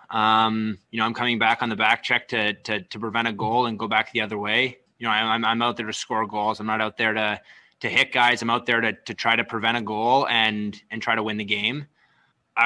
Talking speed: 275 wpm